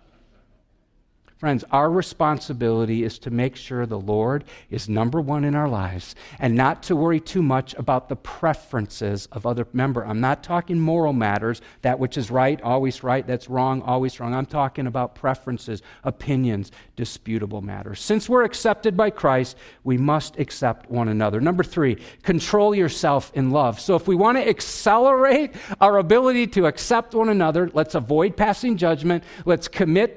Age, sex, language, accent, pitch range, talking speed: 50-69, male, English, American, 120-165 Hz, 165 wpm